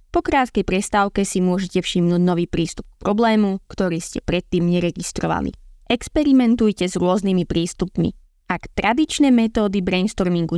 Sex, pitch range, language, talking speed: female, 180-235 Hz, Slovak, 125 wpm